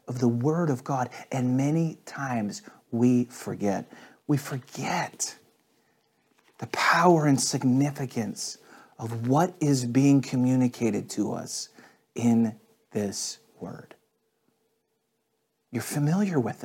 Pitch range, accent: 140-210 Hz, American